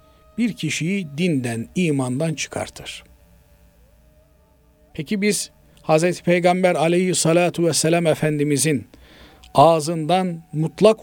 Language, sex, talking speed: Turkish, male, 75 wpm